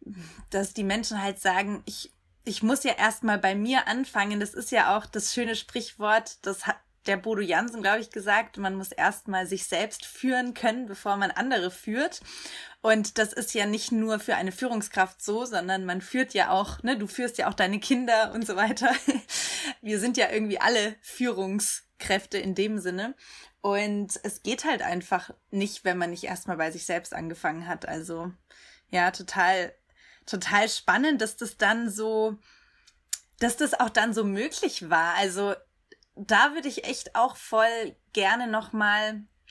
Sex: female